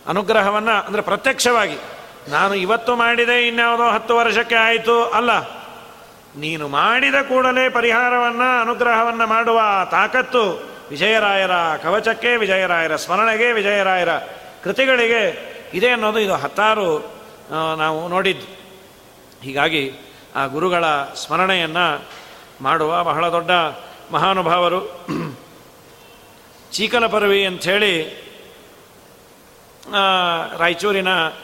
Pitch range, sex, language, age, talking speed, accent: 180-235 Hz, male, Kannada, 40-59, 80 wpm, native